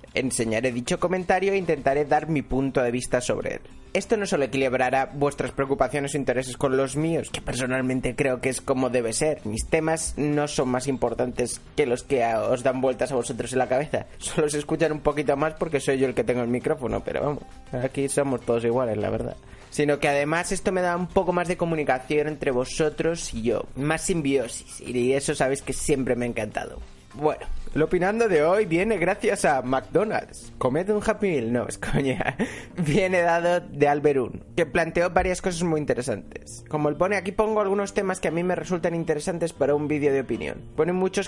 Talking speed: 205 wpm